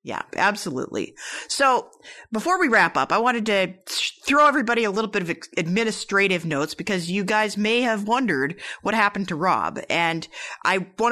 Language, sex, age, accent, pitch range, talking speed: English, female, 30-49, American, 170-220 Hz, 165 wpm